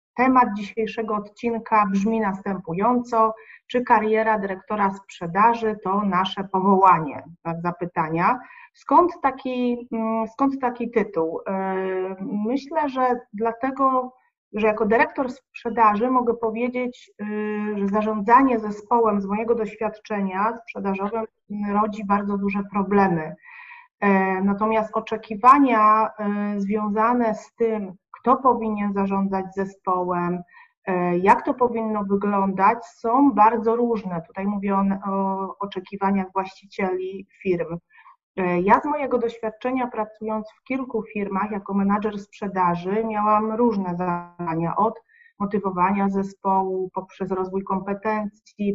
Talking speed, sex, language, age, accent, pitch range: 100 wpm, female, Polish, 30-49, native, 195-230 Hz